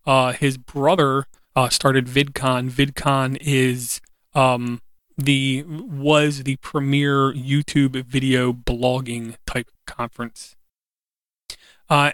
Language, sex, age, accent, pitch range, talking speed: English, male, 30-49, American, 125-140 Hz, 95 wpm